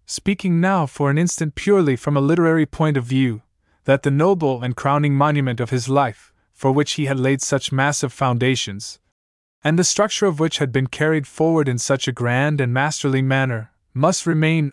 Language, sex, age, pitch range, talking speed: English, male, 20-39, 125-155 Hz, 190 wpm